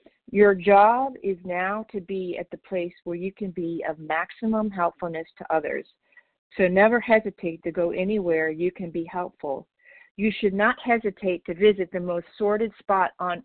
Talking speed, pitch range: 175 wpm, 180-220 Hz